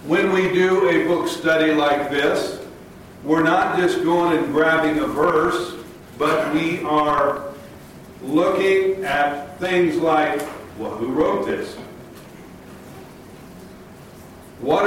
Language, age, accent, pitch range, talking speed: English, 50-69, American, 160-185 Hz, 115 wpm